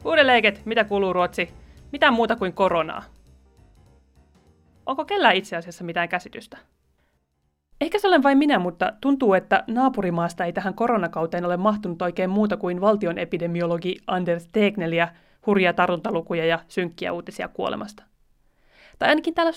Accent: native